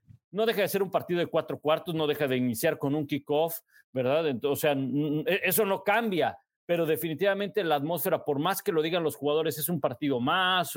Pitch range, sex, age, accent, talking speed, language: 150-190 Hz, male, 50-69, Mexican, 205 wpm, Spanish